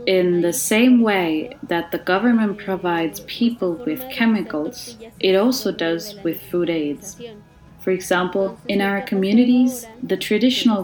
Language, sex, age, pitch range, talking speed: English, female, 30-49, 170-235 Hz, 135 wpm